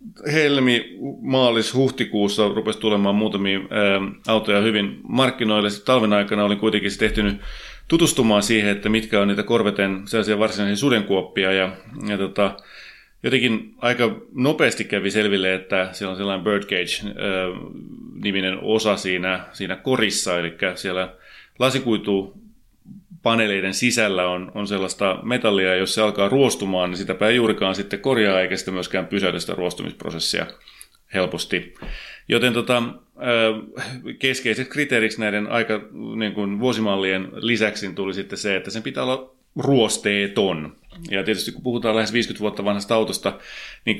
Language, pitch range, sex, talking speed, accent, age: Finnish, 95-110 Hz, male, 120 wpm, native, 30-49